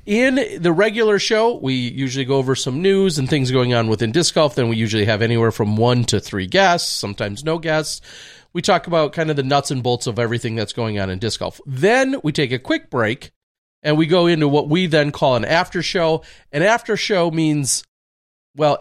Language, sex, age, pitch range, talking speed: English, male, 40-59, 110-165 Hz, 220 wpm